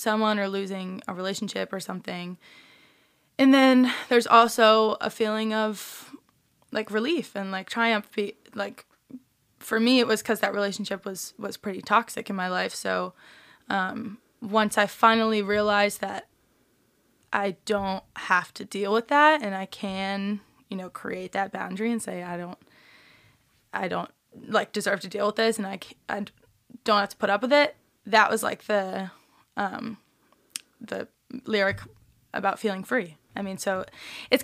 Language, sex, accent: English, female, American